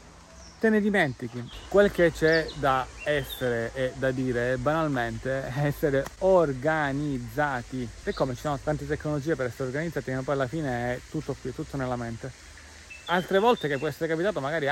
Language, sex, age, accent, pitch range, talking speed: Italian, male, 30-49, native, 130-180 Hz, 170 wpm